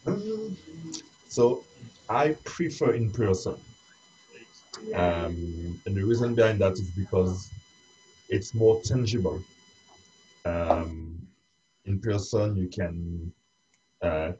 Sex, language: male, English